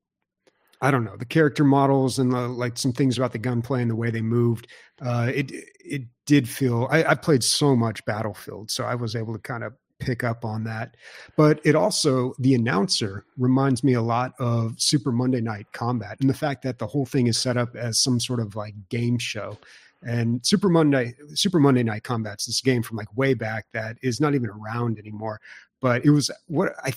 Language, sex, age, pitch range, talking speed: English, male, 30-49, 115-135 Hz, 210 wpm